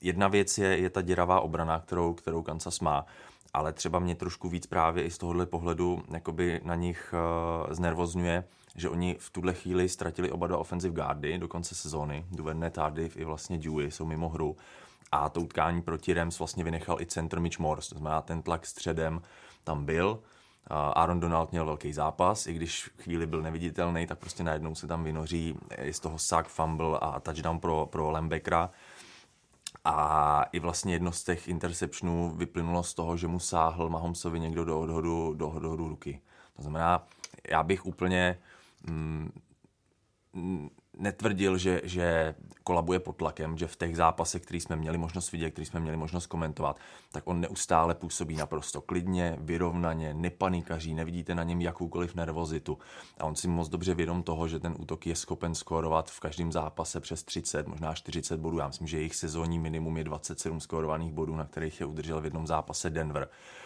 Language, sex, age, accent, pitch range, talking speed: Czech, male, 20-39, native, 80-85 Hz, 180 wpm